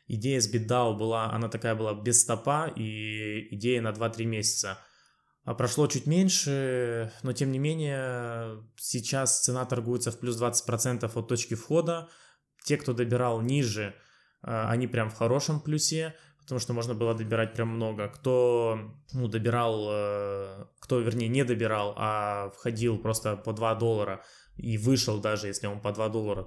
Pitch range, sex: 105-125 Hz, male